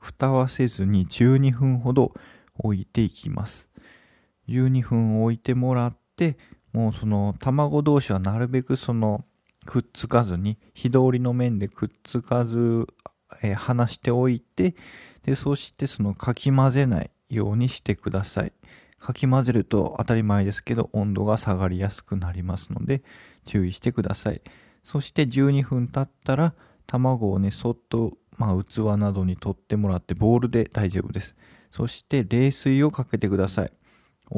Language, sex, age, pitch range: Japanese, male, 20-39, 100-130 Hz